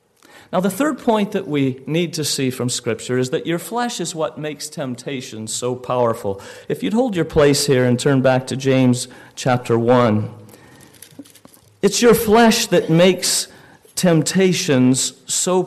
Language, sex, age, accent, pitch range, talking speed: English, male, 40-59, American, 125-185 Hz, 155 wpm